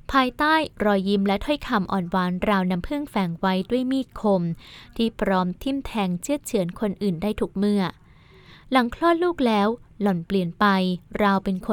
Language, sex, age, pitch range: Thai, female, 20-39, 185-230 Hz